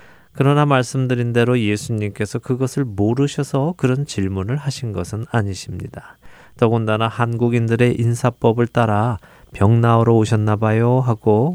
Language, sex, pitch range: Korean, male, 100-130 Hz